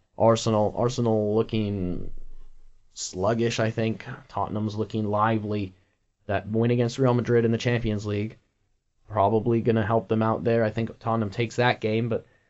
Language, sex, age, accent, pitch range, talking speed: English, male, 20-39, American, 100-115 Hz, 155 wpm